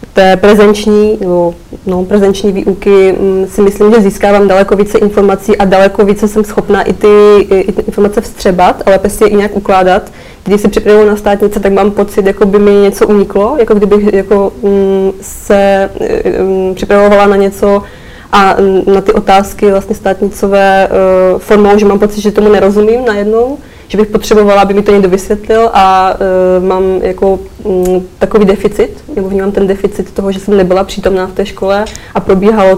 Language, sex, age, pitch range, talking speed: Czech, female, 20-39, 195-210 Hz, 180 wpm